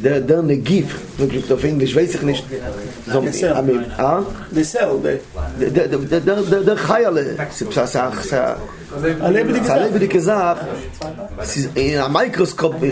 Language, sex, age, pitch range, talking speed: English, male, 30-49, 125-175 Hz, 50 wpm